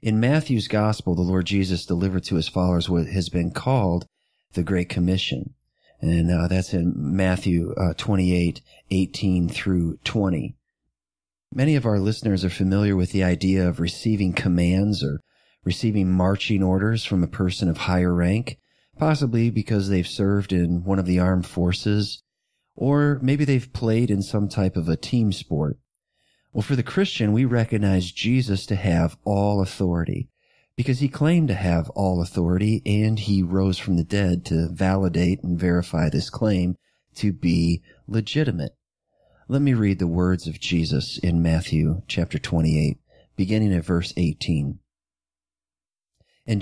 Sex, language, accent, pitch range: male, English, American, 85-105 Hz